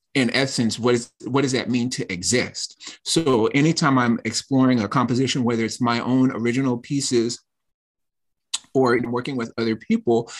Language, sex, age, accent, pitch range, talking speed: English, male, 30-49, American, 115-130 Hz, 150 wpm